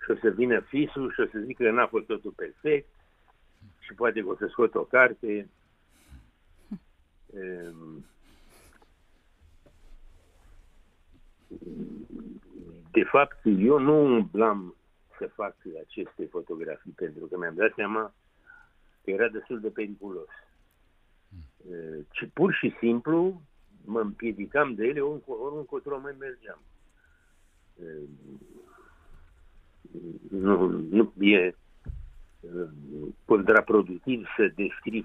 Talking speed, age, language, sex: 100 wpm, 60-79, Romanian, male